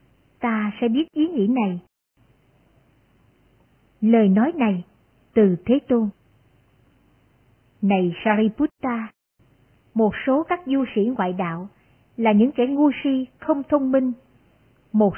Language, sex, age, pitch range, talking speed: Vietnamese, male, 60-79, 195-265 Hz, 120 wpm